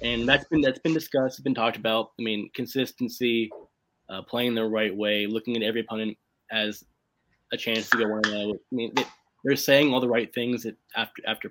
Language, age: English, 20-39